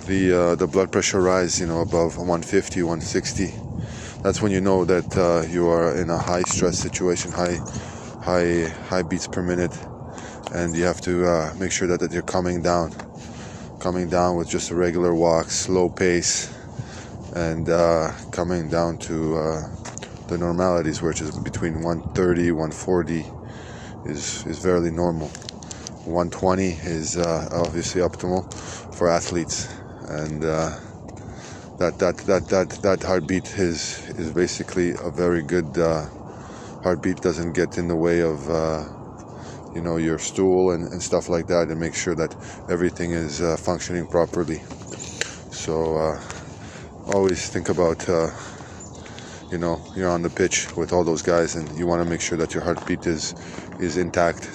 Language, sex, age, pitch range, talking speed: Hebrew, male, 20-39, 85-95 Hz, 160 wpm